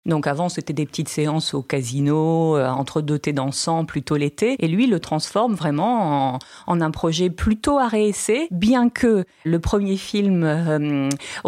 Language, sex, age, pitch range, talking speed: French, female, 40-59, 145-185 Hz, 160 wpm